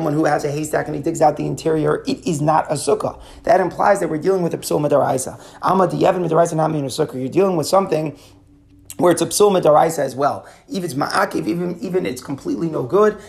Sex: male